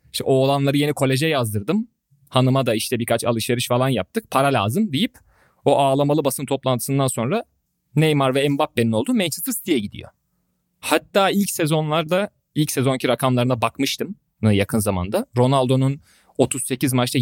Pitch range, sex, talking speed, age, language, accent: 115-150 Hz, male, 135 wpm, 30-49, Turkish, native